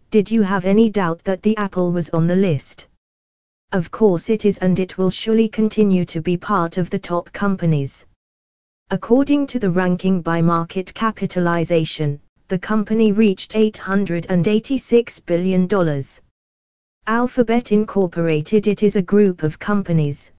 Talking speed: 140 wpm